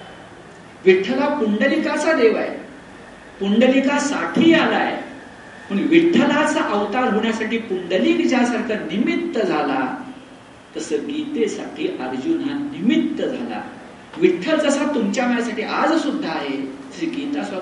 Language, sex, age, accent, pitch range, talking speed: Hindi, male, 50-69, native, 225-295 Hz, 60 wpm